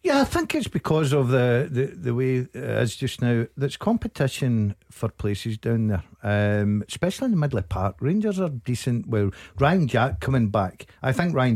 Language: English